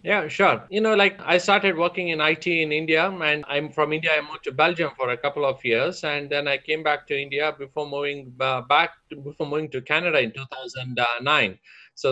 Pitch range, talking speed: 140-180 Hz, 220 wpm